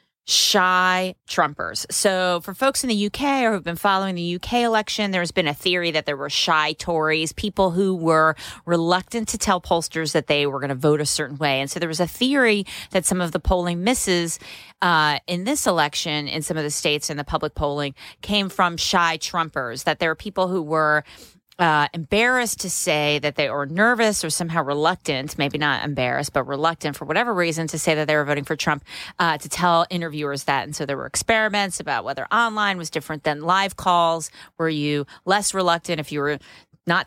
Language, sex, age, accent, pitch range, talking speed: English, female, 30-49, American, 150-185 Hz, 210 wpm